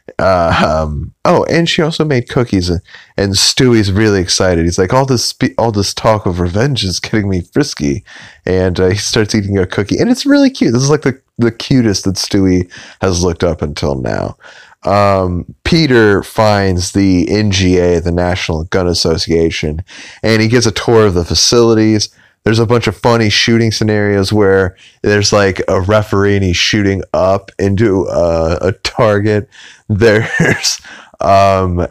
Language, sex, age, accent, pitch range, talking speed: English, male, 30-49, American, 90-110 Hz, 165 wpm